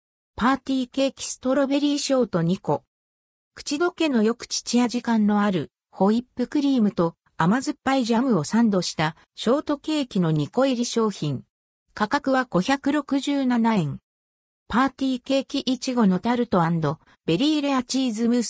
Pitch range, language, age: 175-265 Hz, Japanese, 50-69